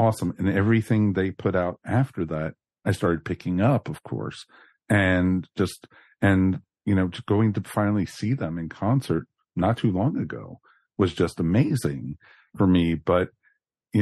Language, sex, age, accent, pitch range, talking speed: English, male, 50-69, American, 90-110 Hz, 160 wpm